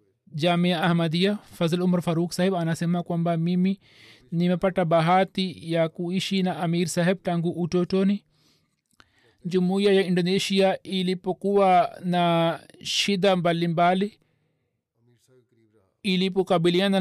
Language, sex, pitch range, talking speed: Swahili, male, 170-190 Hz, 95 wpm